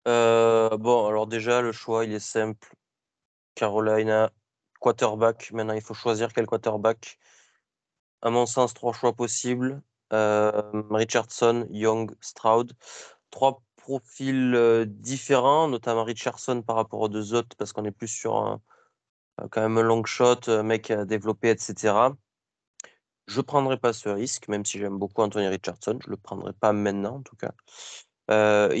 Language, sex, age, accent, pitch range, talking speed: French, male, 20-39, French, 105-125 Hz, 155 wpm